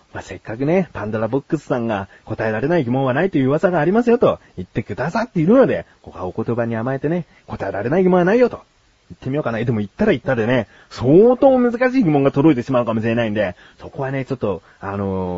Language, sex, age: Japanese, male, 30-49